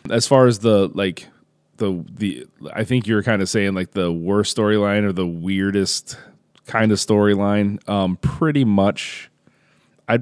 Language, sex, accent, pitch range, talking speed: English, male, American, 95-115 Hz, 160 wpm